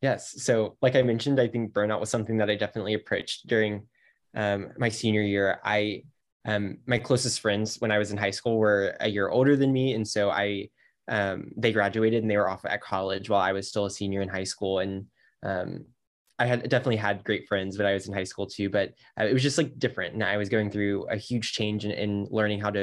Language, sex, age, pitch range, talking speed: English, male, 10-29, 100-115 Hz, 240 wpm